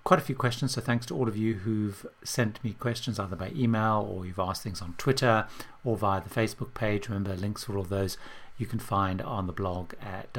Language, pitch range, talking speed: English, 100-120 Hz, 230 wpm